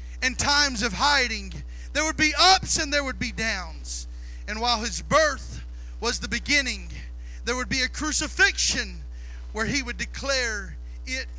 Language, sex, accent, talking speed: English, male, American, 160 wpm